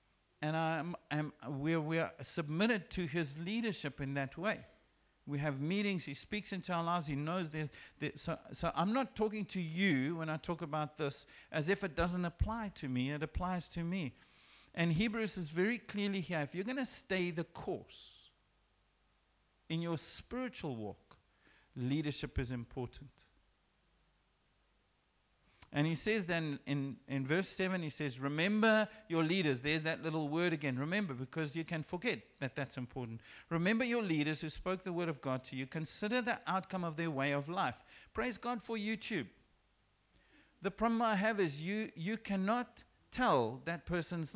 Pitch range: 150-205 Hz